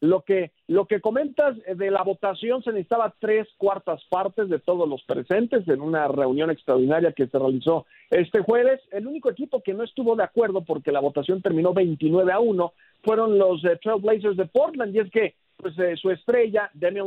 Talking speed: 195 wpm